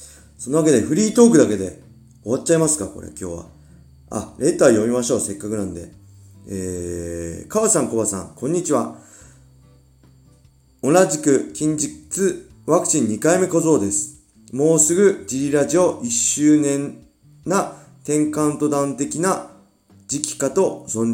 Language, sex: Japanese, male